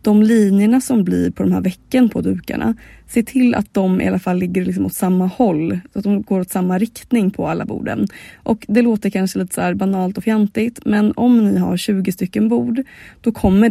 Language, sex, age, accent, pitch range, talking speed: Swedish, female, 20-39, native, 180-230 Hz, 225 wpm